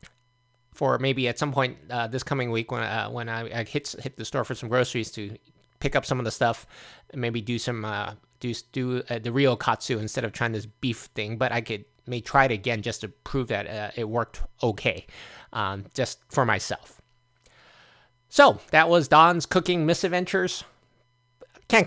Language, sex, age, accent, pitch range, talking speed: English, male, 20-39, American, 115-135 Hz, 190 wpm